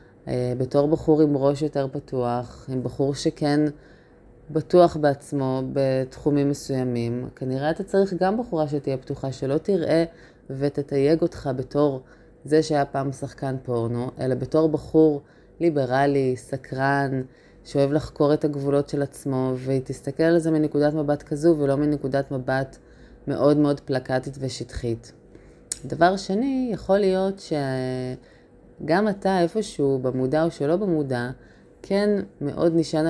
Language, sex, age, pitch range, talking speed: Hebrew, female, 20-39, 130-155 Hz, 125 wpm